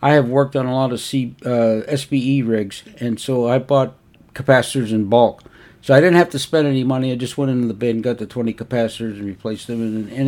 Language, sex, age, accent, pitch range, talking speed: English, male, 60-79, American, 120-145 Hz, 240 wpm